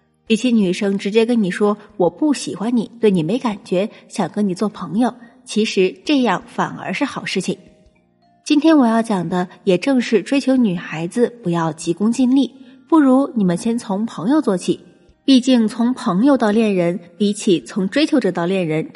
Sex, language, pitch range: female, Chinese, 195-255 Hz